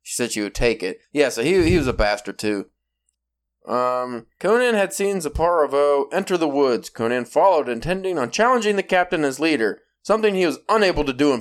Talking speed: 200 wpm